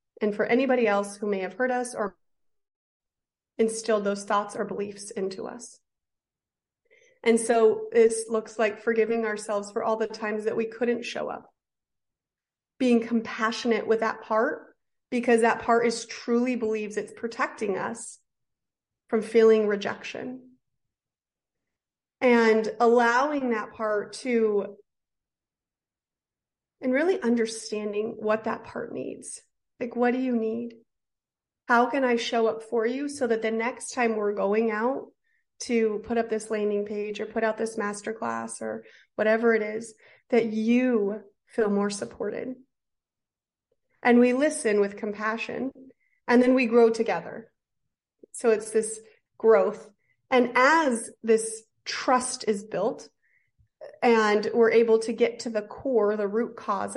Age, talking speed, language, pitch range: 30-49, 140 wpm, English, 215-240 Hz